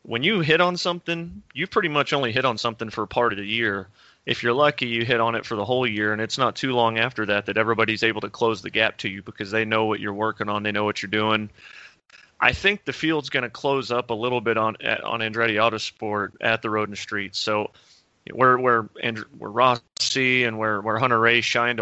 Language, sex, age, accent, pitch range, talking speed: English, male, 30-49, American, 105-130 Hz, 245 wpm